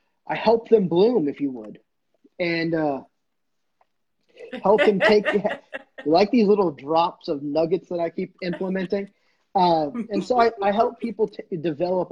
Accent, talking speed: American, 150 wpm